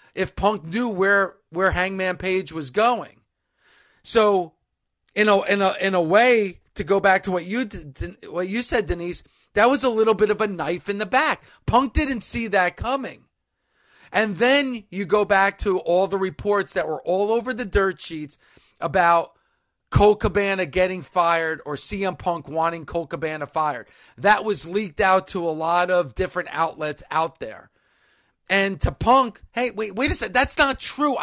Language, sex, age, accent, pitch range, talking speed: English, male, 40-59, American, 180-230 Hz, 175 wpm